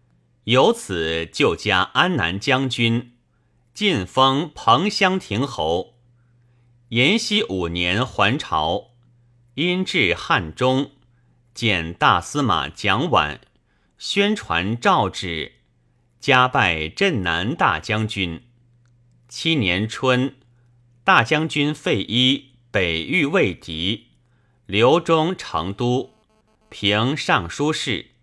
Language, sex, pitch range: Chinese, male, 105-130 Hz